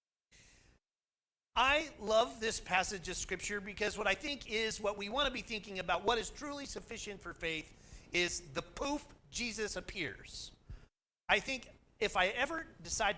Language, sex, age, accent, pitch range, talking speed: English, male, 40-59, American, 170-270 Hz, 160 wpm